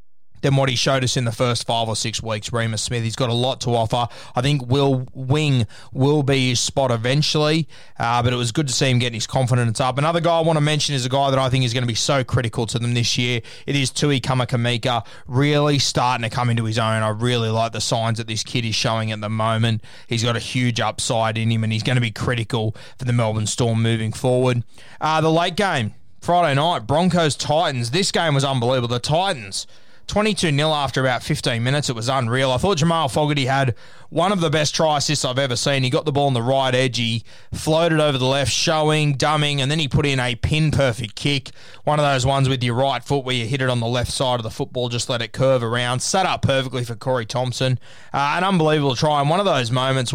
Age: 20-39